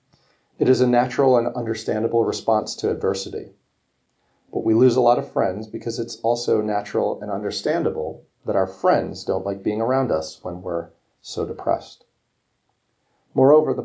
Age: 40-59